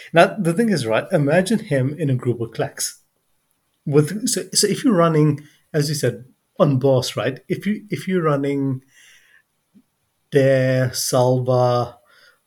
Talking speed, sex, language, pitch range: 150 wpm, male, English, 125-165 Hz